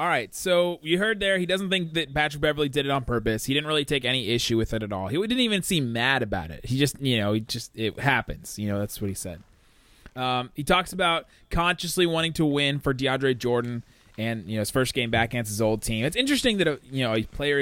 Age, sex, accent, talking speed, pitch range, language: 20-39, male, American, 260 wpm, 110-150 Hz, English